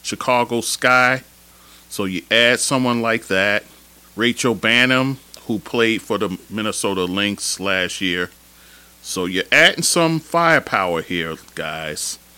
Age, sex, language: 40-59, male, English